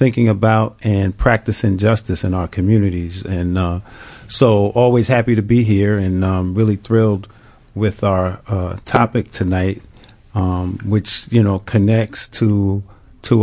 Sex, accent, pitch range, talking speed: male, American, 95-110 Hz, 145 wpm